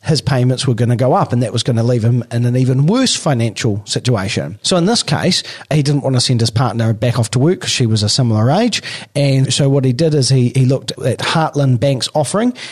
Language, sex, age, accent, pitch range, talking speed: English, male, 40-59, Australian, 120-145 Hz, 255 wpm